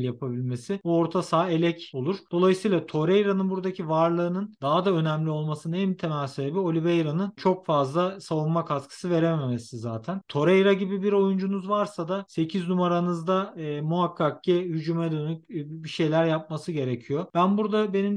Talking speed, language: 150 wpm, Turkish